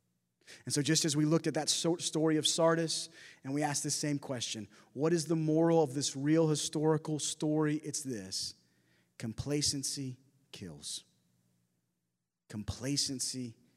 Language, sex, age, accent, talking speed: English, male, 30-49, American, 135 wpm